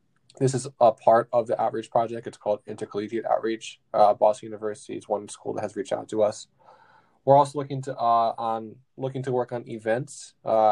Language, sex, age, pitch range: English, male, 10-29, 110-130 Hz